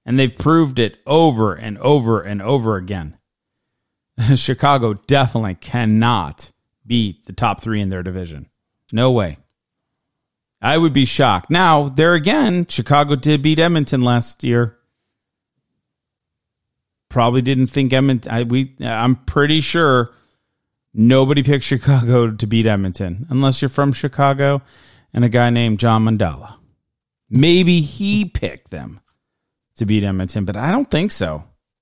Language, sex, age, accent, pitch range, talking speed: English, male, 40-59, American, 110-140 Hz, 135 wpm